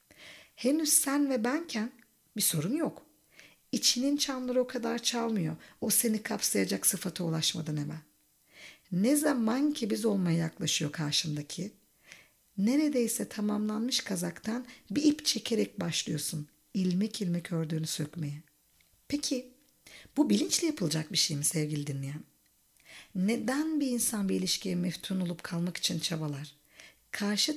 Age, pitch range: 50-69, 165-250 Hz